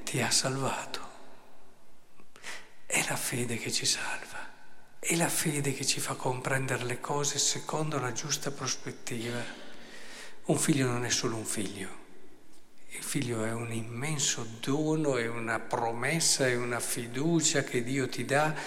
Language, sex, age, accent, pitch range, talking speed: Italian, male, 50-69, native, 120-160 Hz, 145 wpm